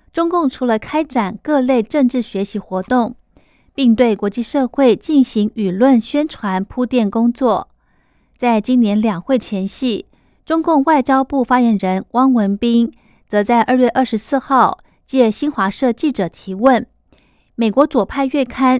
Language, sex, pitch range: Chinese, female, 210-270 Hz